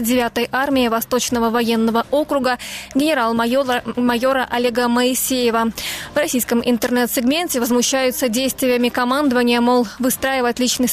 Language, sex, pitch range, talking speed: Ukrainian, female, 240-260 Hz, 95 wpm